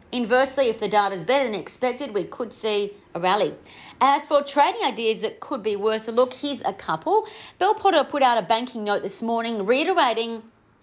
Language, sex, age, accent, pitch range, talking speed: English, female, 40-59, Australian, 195-285 Hz, 200 wpm